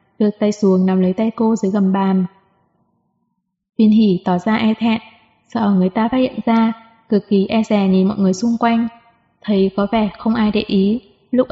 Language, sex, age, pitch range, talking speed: Vietnamese, female, 20-39, 195-230 Hz, 205 wpm